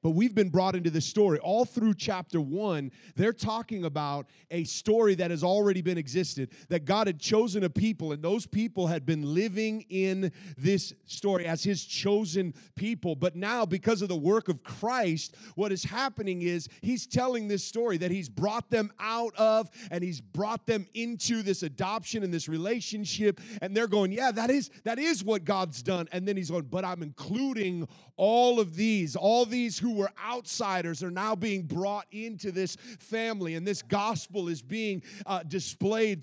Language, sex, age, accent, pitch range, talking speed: English, male, 30-49, American, 170-220 Hz, 185 wpm